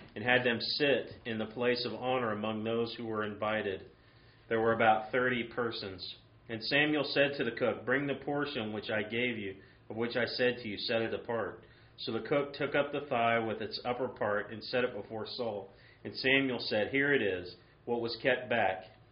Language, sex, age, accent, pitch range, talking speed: English, male, 40-59, American, 110-130 Hz, 210 wpm